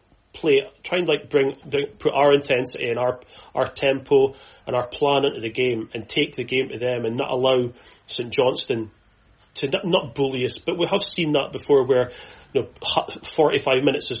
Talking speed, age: 200 wpm, 30-49